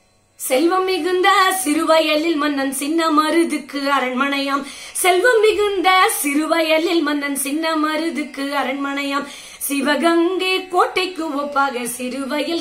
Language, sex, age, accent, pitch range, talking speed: Tamil, female, 20-39, native, 275-375 Hz, 55 wpm